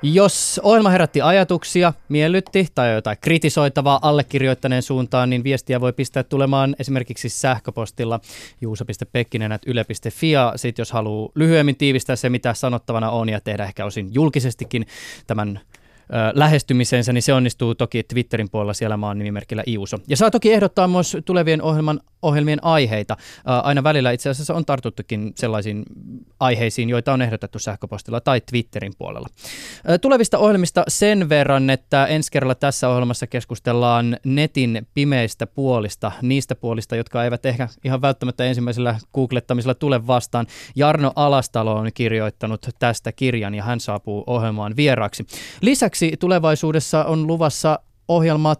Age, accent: 20-39, native